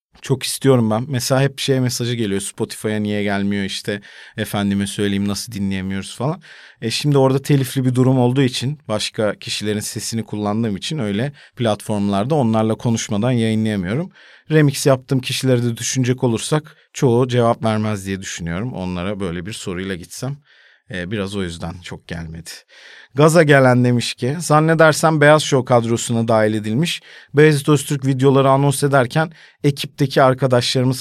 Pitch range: 100-135 Hz